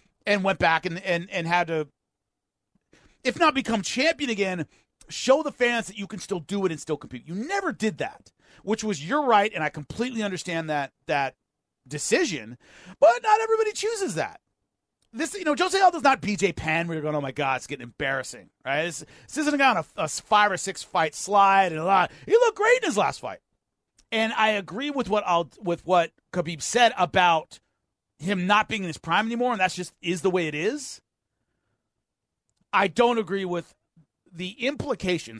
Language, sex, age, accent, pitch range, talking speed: English, male, 40-59, American, 150-220 Hz, 200 wpm